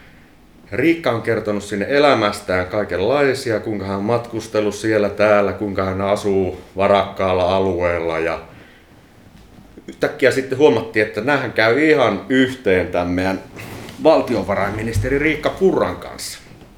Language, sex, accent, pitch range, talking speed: Finnish, male, native, 95-130 Hz, 105 wpm